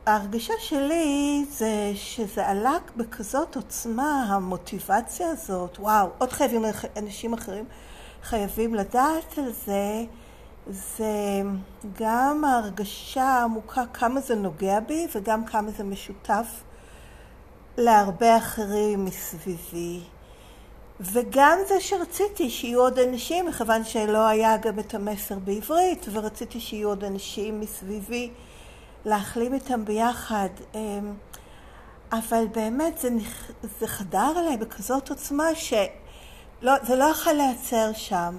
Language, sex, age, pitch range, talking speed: Hebrew, female, 50-69, 205-265 Hz, 105 wpm